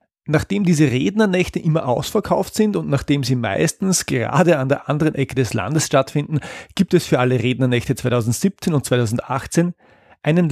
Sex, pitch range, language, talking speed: male, 120-155 Hz, German, 155 wpm